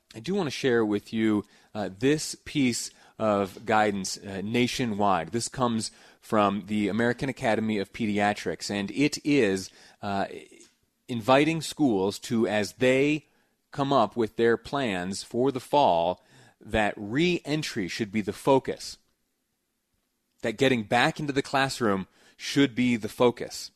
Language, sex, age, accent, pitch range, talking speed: English, male, 30-49, American, 100-125 Hz, 140 wpm